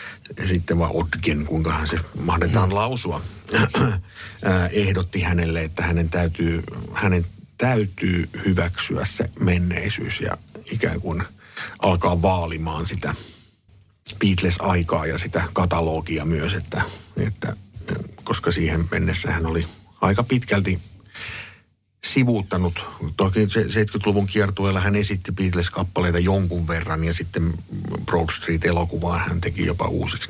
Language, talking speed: Finnish, 105 wpm